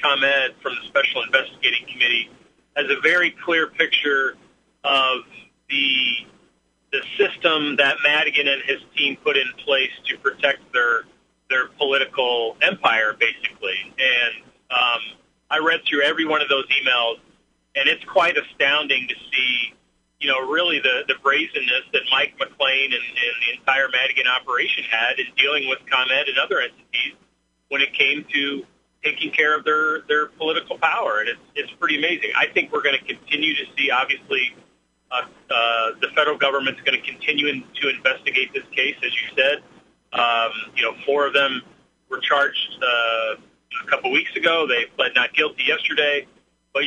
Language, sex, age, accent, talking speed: English, male, 40-59, American, 165 wpm